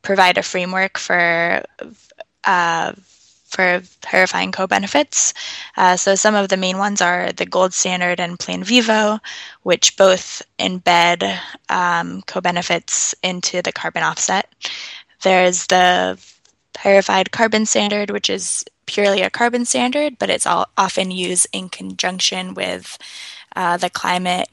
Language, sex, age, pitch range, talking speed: English, female, 10-29, 180-200 Hz, 130 wpm